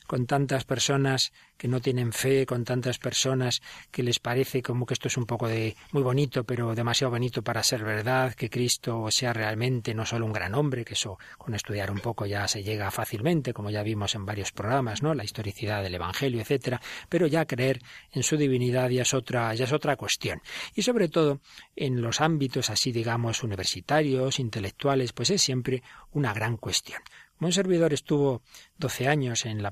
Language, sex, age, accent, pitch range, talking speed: Spanish, male, 40-59, Spanish, 115-140 Hz, 195 wpm